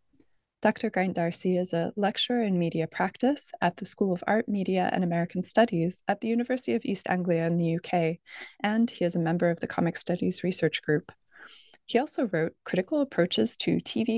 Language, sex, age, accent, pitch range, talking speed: English, female, 20-39, American, 175-230 Hz, 190 wpm